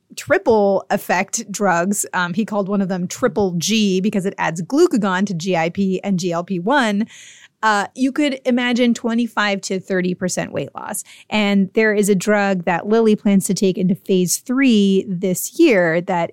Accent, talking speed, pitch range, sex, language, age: American, 160 wpm, 185-220 Hz, female, English, 30-49